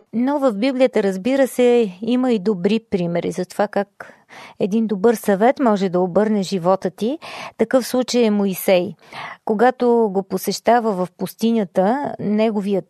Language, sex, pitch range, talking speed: Bulgarian, female, 195-255 Hz, 140 wpm